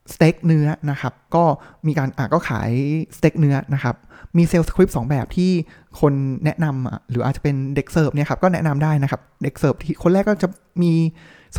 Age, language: 20-39, Thai